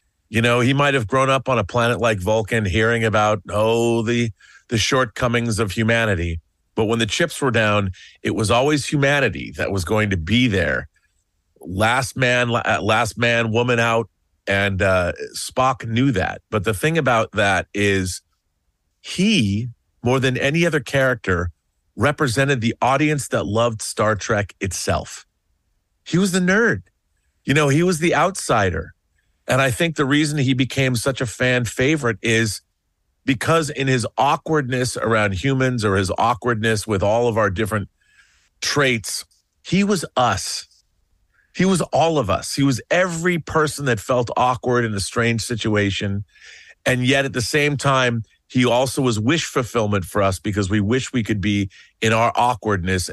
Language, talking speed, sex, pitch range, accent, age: English, 160 wpm, male, 100-130 Hz, American, 40-59